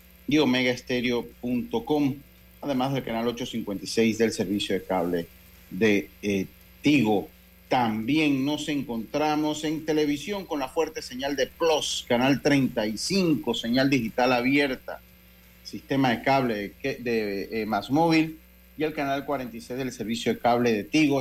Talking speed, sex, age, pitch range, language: 135 wpm, male, 40-59, 110-145 Hz, Spanish